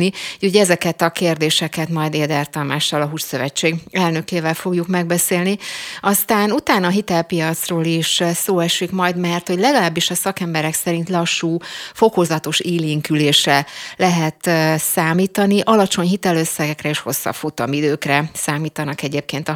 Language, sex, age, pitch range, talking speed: Hungarian, female, 30-49, 155-180 Hz, 125 wpm